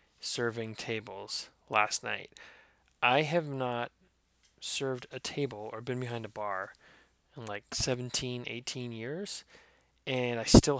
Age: 20-39